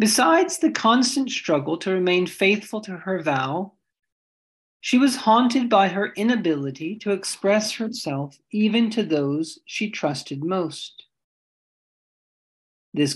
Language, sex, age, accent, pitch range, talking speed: English, male, 50-69, American, 155-215 Hz, 120 wpm